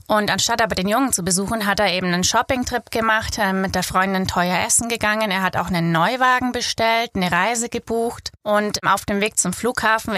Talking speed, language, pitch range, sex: 200 wpm, German, 180-215 Hz, female